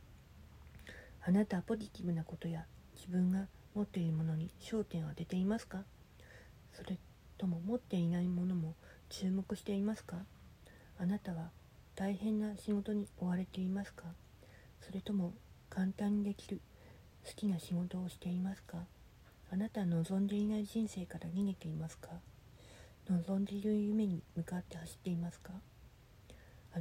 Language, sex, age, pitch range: Japanese, female, 40-59, 170-205 Hz